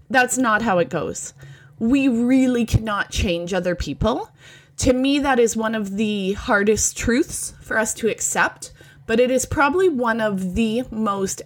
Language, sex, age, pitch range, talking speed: English, female, 20-39, 160-240 Hz, 170 wpm